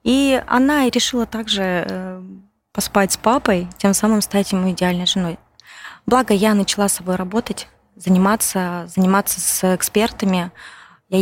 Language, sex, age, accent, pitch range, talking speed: Russian, female, 20-39, native, 185-235 Hz, 130 wpm